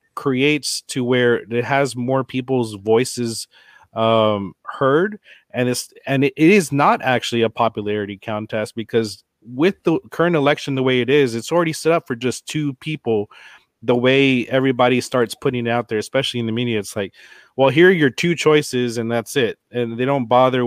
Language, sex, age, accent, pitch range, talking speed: English, male, 30-49, American, 115-140 Hz, 185 wpm